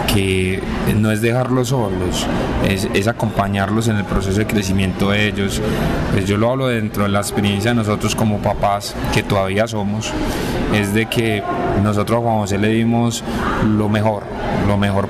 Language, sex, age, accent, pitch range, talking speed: Spanish, male, 20-39, Colombian, 100-115 Hz, 165 wpm